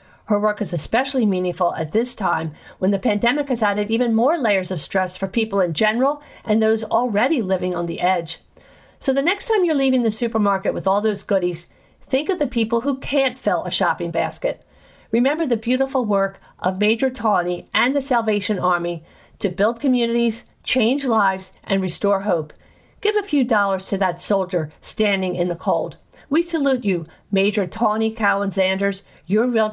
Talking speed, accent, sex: 180 wpm, American, female